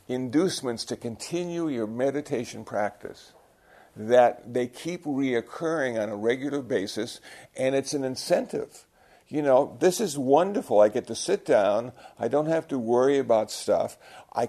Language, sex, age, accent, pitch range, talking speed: English, male, 50-69, American, 115-145 Hz, 150 wpm